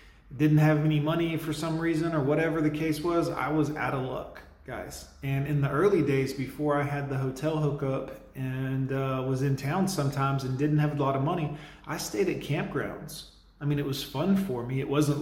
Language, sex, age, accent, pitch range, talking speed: English, male, 30-49, American, 130-150 Hz, 215 wpm